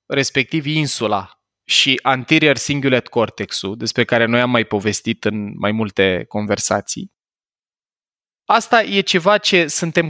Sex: male